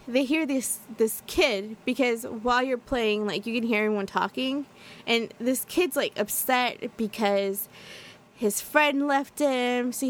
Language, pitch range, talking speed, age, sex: English, 210-265 Hz, 160 wpm, 20-39, female